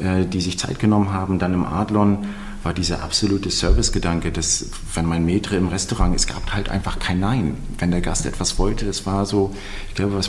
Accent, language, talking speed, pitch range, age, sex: German, German, 205 wpm, 85-100 Hz, 40-59, male